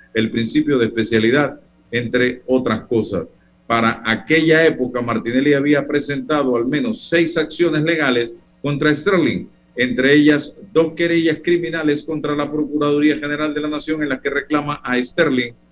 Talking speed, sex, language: 145 wpm, male, Spanish